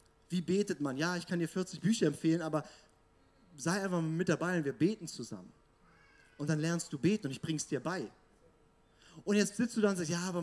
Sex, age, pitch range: male, 30-49, 155-190 Hz